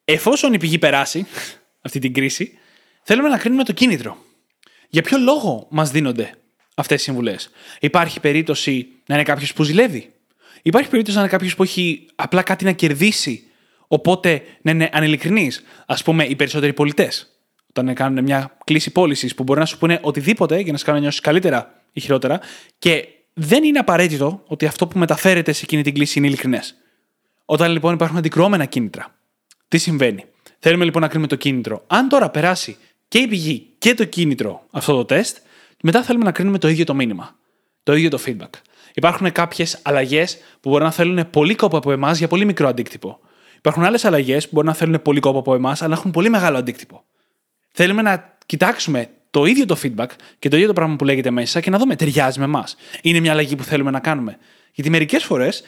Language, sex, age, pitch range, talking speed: Greek, male, 20-39, 145-190 Hz, 195 wpm